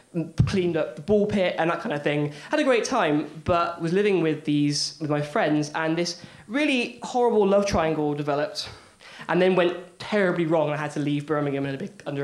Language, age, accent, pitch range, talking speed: English, 20-39, British, 150-200 Hz, 215 wpm